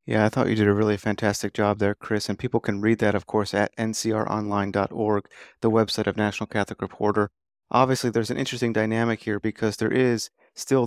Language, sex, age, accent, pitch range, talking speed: English, male, 30-49, American, 105-115 Hz, 200 wpm